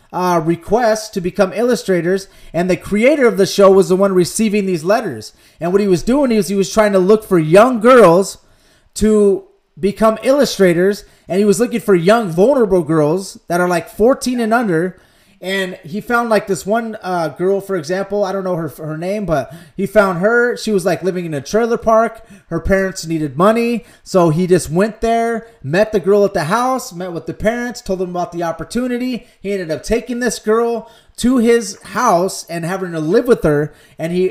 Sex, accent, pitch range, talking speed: male, American, 170-215 Hz, 205 wpm